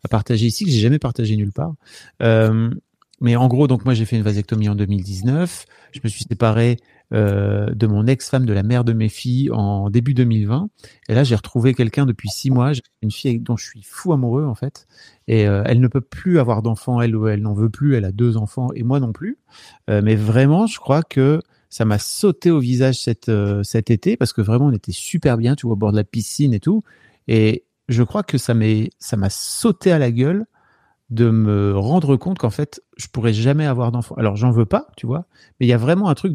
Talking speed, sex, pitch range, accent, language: 240 wpm, male, 110-145 Hz, French, French